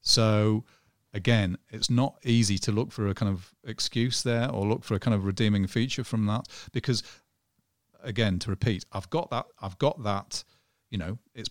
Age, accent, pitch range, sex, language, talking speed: 40-59, British, 95-120 Hz, male, English, 190 wpm